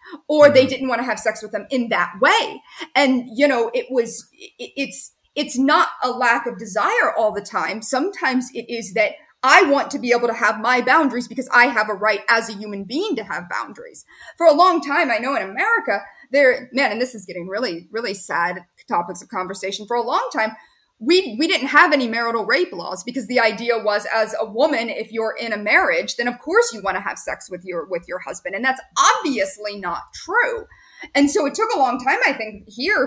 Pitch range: 215-285 Hz